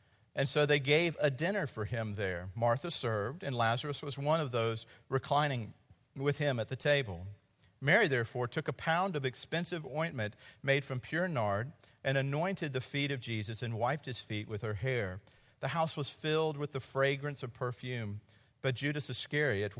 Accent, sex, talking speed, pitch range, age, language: American, male, 180 wpm, 110-140 Hz, 50-69, English